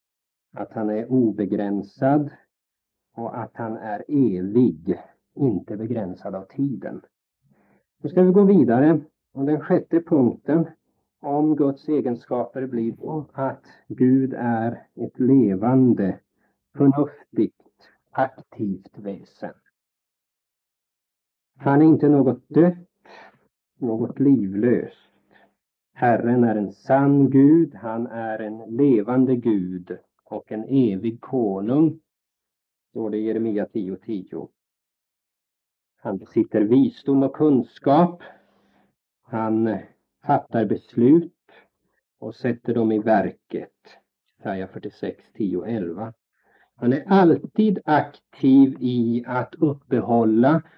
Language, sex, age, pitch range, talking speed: Swedish, male, 50-69, 110-145 Hz, 100 wpm